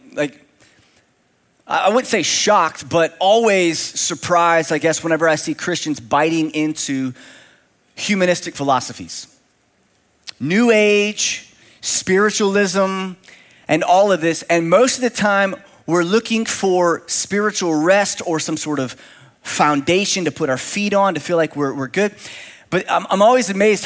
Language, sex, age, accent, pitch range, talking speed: English, male, 30-49, American, 155-210 Hz, 140 wpm